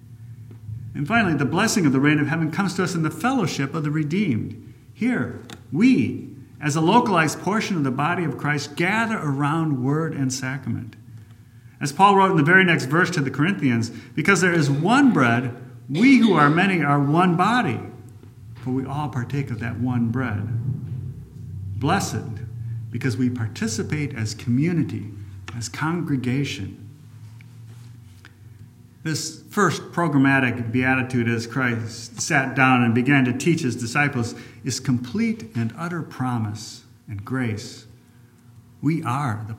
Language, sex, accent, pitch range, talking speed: English, male, American, 115-155 Hz, 145 wpm